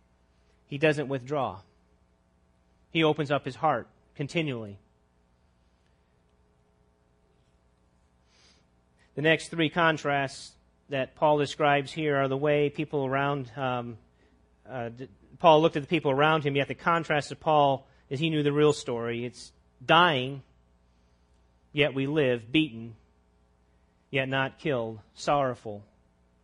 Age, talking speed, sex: 30-49, 120 wpm, male